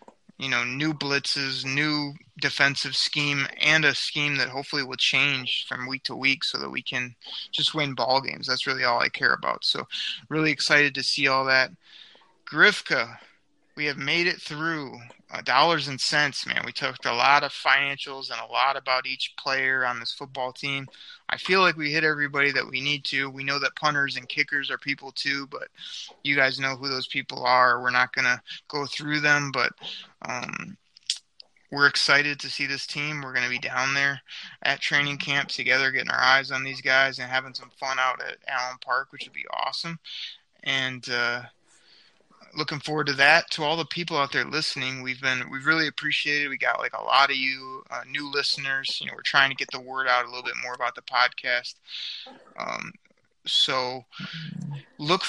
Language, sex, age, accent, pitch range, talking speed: English, male, 20-39, American, 130-150 Hz, 200 wpm